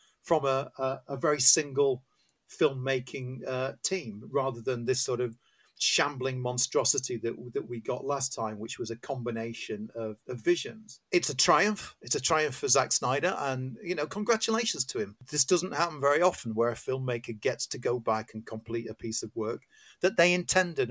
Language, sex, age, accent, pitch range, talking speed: English, male, 40-59, British, 125-160 Hz, 185 wpm